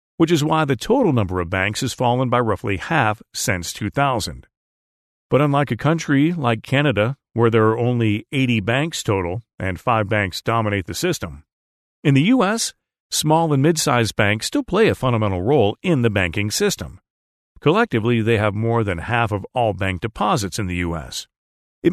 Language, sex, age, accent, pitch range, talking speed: English, male, 50-69, American, 95-130 Hz, 175 wpm